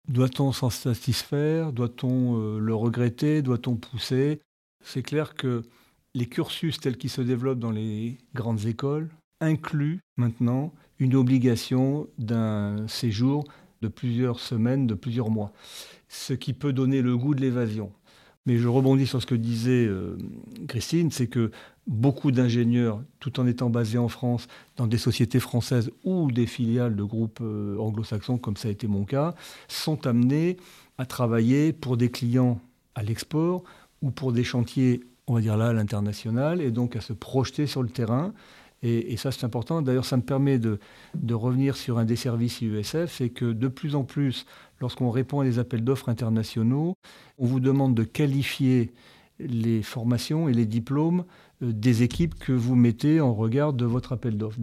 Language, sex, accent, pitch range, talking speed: French, male, French, 115-135 Hz, 170 wpm